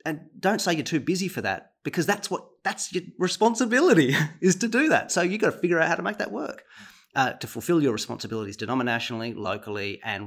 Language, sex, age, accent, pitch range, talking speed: English, male, 30-49, Australian, 110-155 Hz, 210 wpm